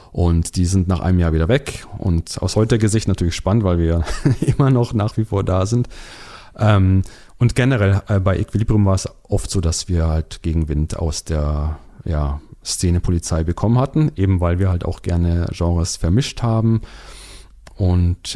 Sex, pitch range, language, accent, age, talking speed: male, 90-115 Hz, German, German, 40-59, 175 wpm